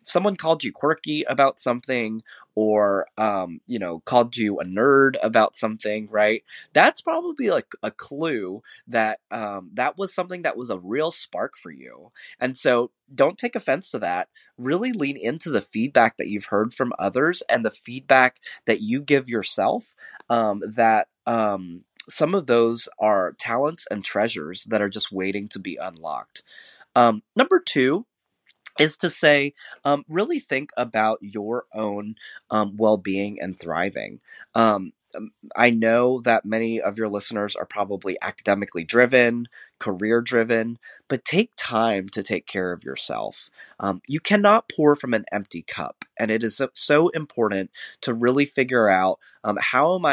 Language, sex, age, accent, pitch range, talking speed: English, male, 20-39, American, 105-140 Hz, 160 wpm